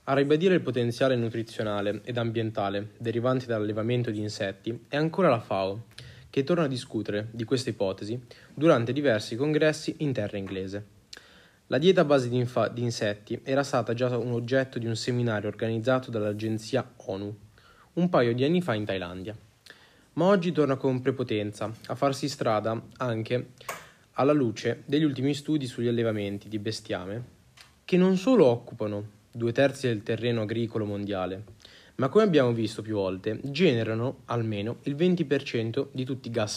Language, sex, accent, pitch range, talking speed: Italian, male, native, 110-135 Hz, 155 wpm